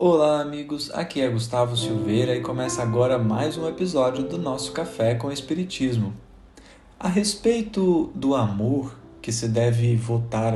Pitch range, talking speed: 115-155 Hz, 140 wpm